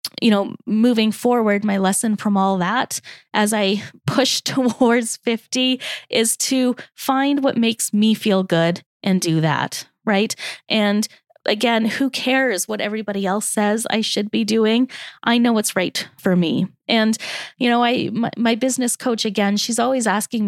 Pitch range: 200-245 Hz